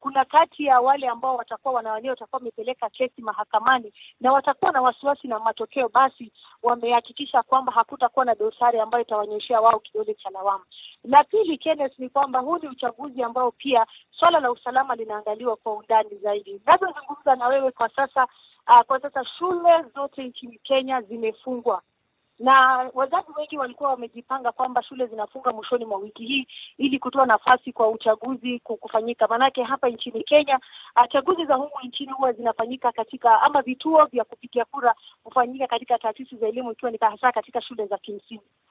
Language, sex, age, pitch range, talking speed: Swahili, female, 30-49, 235-280 Hz, 160 wpm